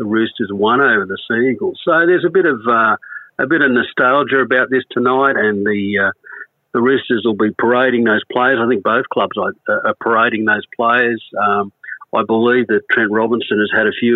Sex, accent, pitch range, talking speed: male, Australian, 105-125 Hz, 210 wpm